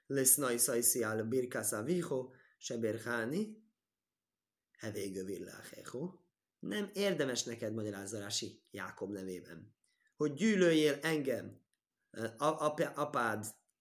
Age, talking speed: 30-49, 60 wpm